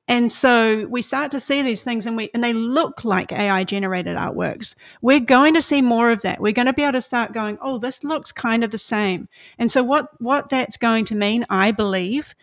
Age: 40-59